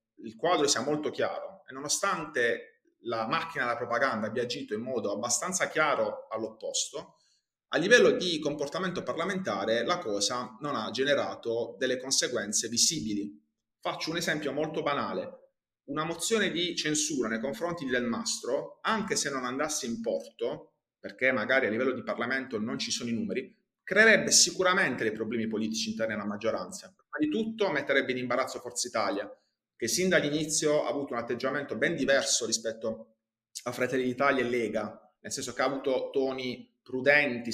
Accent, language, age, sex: native, Italian, 30-49, male